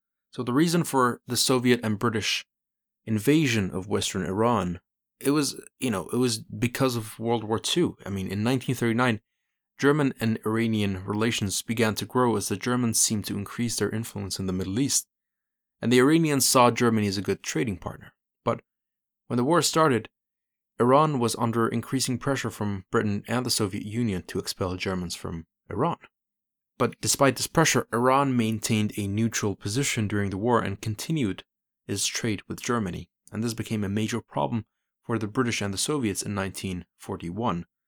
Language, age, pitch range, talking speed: English, 30-49, 100-125 Hz, 175 wpm